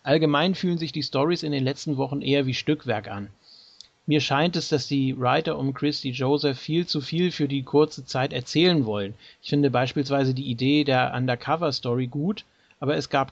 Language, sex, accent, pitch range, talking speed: German, male, German, 125-150 Hz, 190 wpm